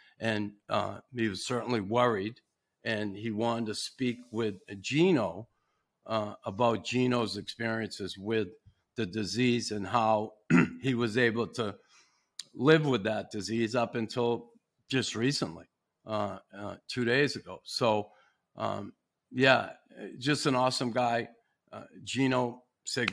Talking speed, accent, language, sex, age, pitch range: 125 wpm, American, English, male, 50-69, 105-120 Hz